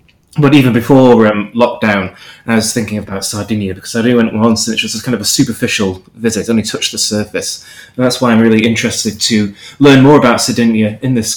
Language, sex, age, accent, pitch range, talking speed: English, male, 20-39, British, 105-125 Hz, 215 wpm